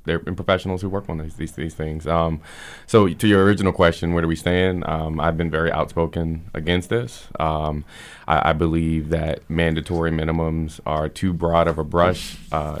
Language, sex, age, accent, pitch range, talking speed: English, male, 20-39, American, 80-90 Hz, 190 wpm